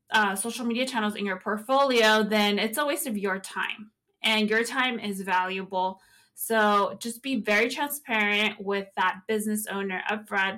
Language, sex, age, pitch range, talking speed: English, female, 20-39, 205-250 Hz, 165 wpm